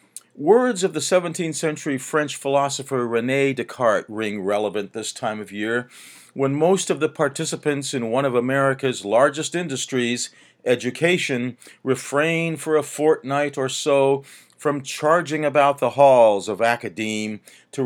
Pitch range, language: 125-165 Hz, English